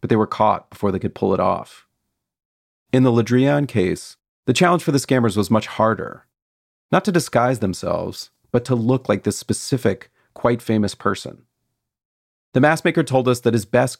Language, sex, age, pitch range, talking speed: English, male, 40-59, 95-130 Hz, 185 wpm